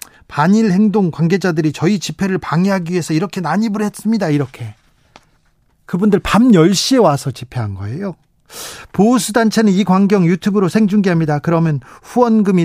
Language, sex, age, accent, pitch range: Korean, male, 40-59, native, 150-195 Hz